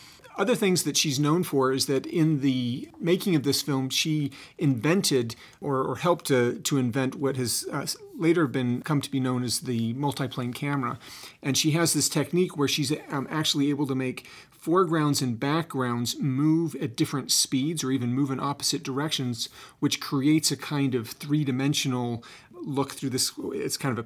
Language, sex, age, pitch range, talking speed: English, male, 40-59, 130-150 Hz, 185 wpm